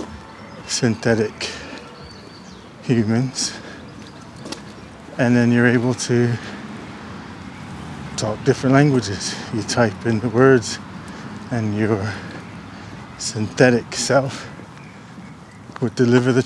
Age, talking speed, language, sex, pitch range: 20-39, 80 wpm, English, male, 115-135 Hz